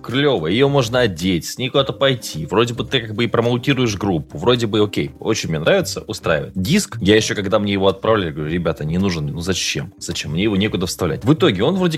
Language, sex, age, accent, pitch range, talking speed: Russian, male, 20-39, native, 90-145 Hz, 225 wpm